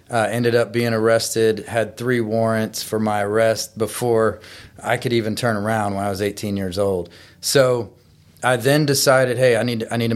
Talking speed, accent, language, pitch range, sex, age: 185 wpm, American, English, 105-120 Hz, male, 30-49